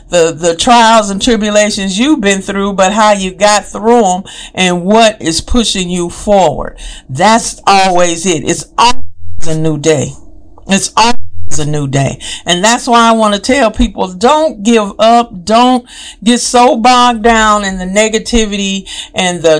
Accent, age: American, 50-69